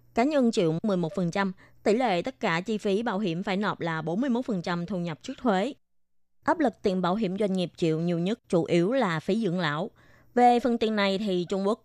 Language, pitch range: Vietnamese, 170-215 Hz